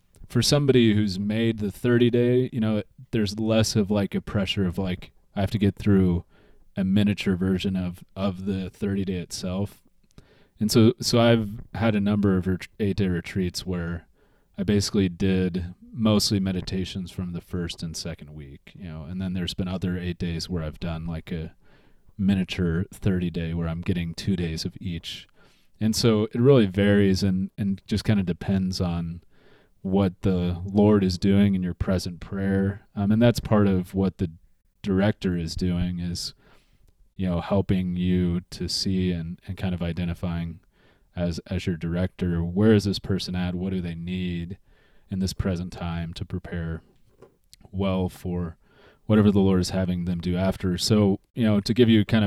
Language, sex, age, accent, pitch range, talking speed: English, male, 30-49, American, 90-100 Hz, 180 wpm